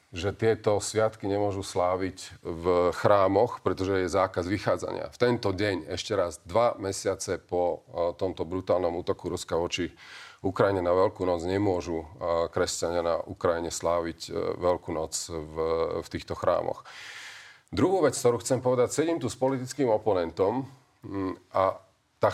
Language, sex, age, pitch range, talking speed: Slovak, male, 40-59, 90-110 Hz, 135 wpm